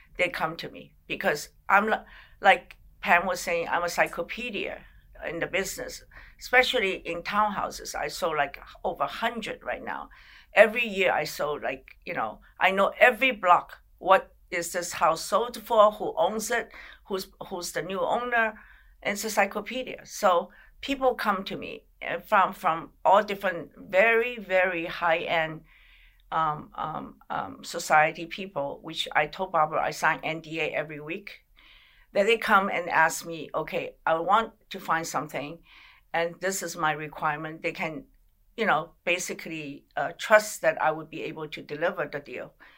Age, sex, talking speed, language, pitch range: 50-69, female, 165 wpm, English, 160-210 Hz